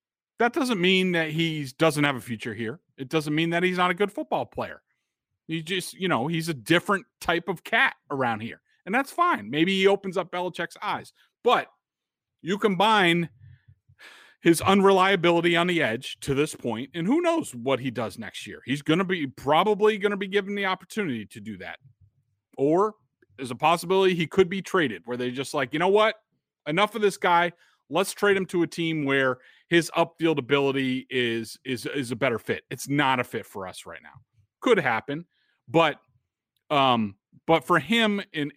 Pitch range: 130-180 Hz